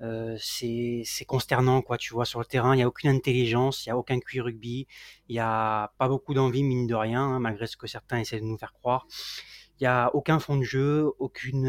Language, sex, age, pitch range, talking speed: French, male, 20-39, 115-135 Hz, 245 wpm